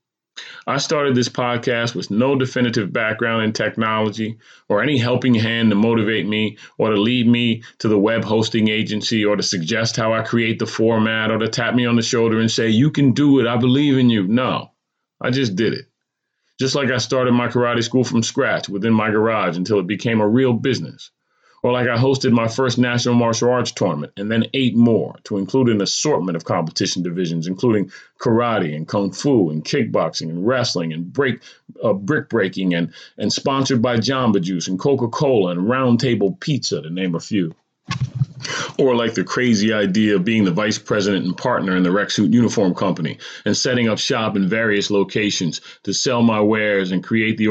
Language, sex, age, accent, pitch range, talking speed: English, male, 30-49, American, 105-125 Hz, 195 wpm